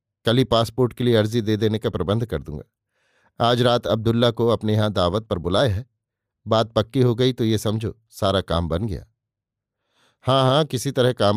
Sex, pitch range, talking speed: male, 110-130 Hz, 200 wpm